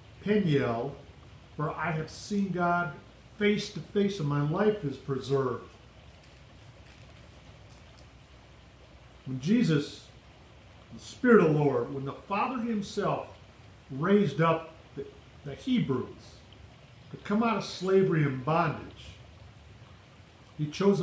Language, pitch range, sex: English, 110-160 Hz, male